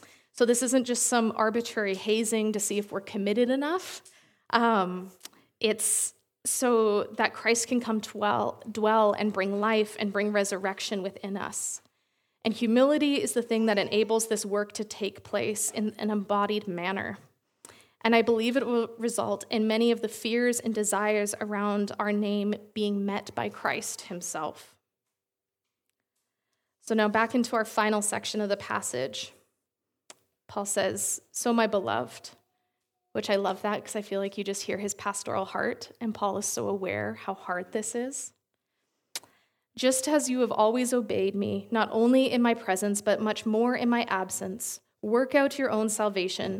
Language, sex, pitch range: English, female, 200-230 Hz